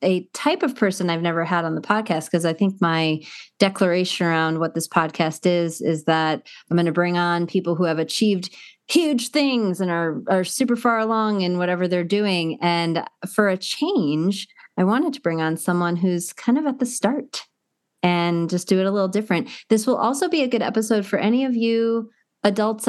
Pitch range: 160-205 Hz